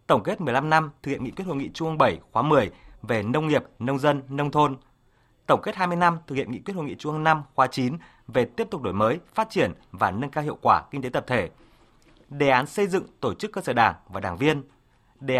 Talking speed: 255 wpm